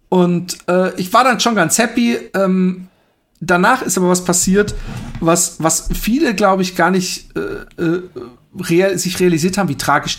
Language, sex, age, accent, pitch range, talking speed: German, male, 40-59, German, 155-195 Hz, 165 wpm